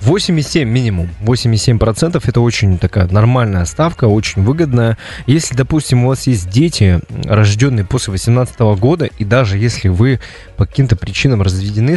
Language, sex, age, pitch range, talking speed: Russian, male, 20-39, 100-130 Hz, 145 wpm